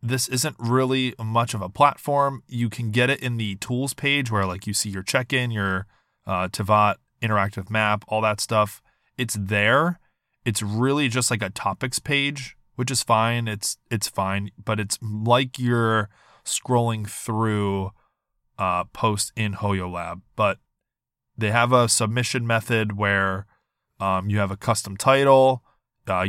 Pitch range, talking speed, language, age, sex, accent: 105-120 Hz, 160 wpm, English, 20-39, male, American